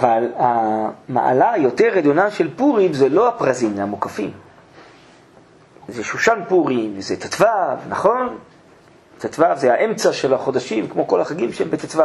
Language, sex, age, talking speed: Hebrew, male, 40-59, 135 wpm